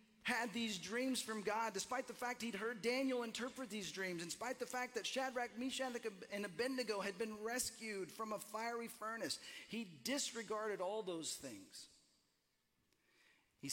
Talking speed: 155 wpm